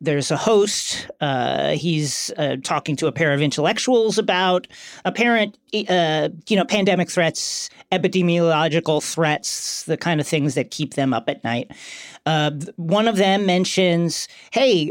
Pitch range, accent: 150-185 Hz, American